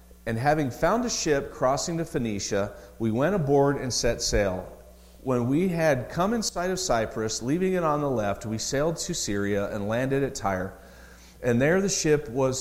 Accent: American